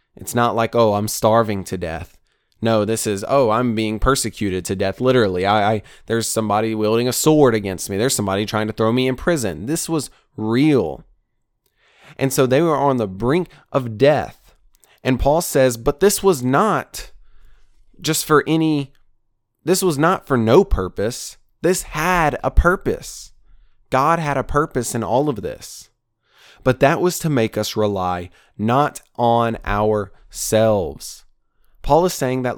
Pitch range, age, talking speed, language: 110-150 Hz, 20-39, 165 wpm, English